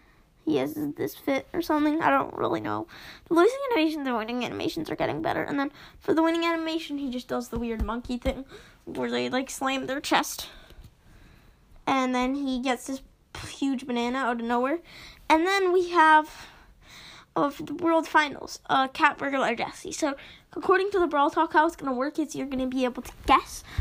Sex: female